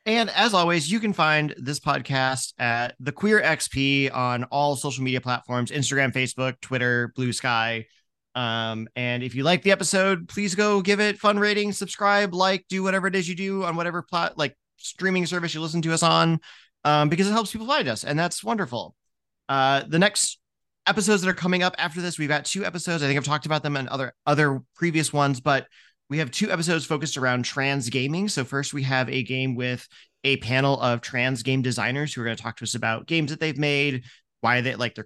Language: English